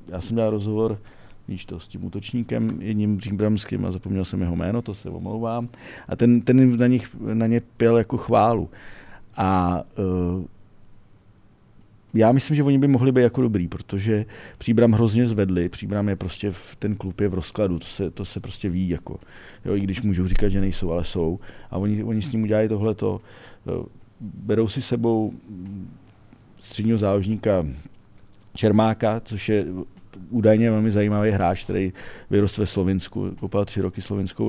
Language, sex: Czech, male